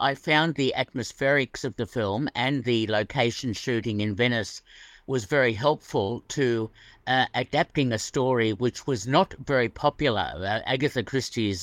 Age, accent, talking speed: 50-69, British, 150 wpm